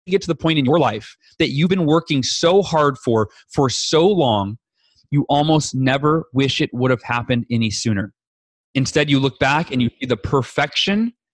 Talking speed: 190 wpm